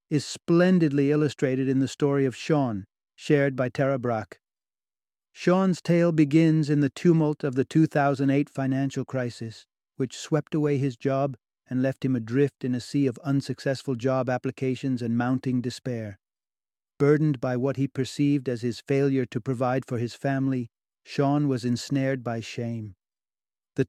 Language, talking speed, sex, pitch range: English, 155 wpm, male, 125-145 Hz